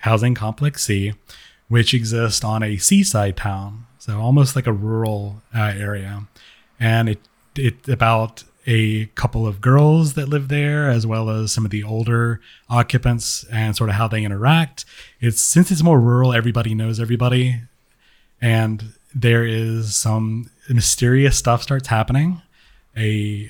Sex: male